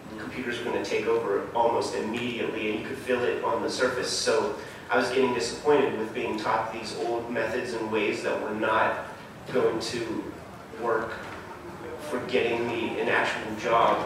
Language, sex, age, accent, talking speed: German, male, 30-49, American, 180 wpm